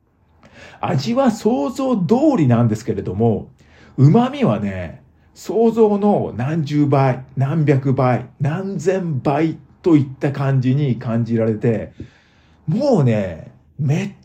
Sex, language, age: male, Japanese, 50-69